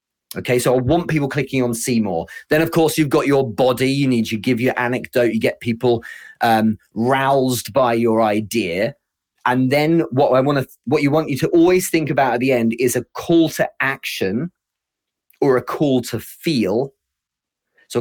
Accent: British